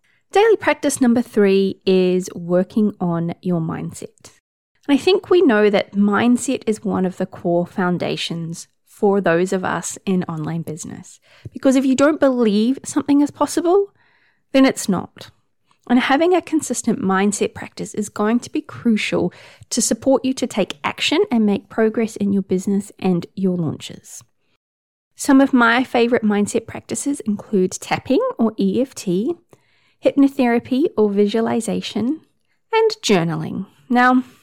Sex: female